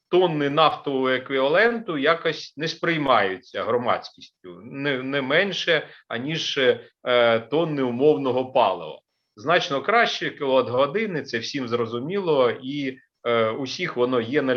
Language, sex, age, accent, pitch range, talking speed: Ukrainian, male, 40-59, native, 125-170 Hz, 105 wpm